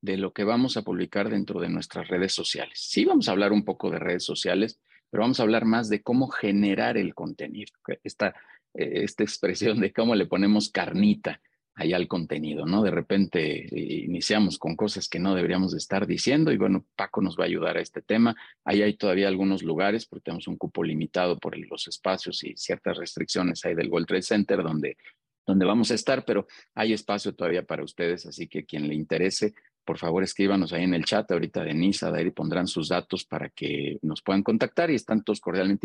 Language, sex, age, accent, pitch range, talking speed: Spanish, male, 40-59, Mexican, 90-115 Hz, 210 wpm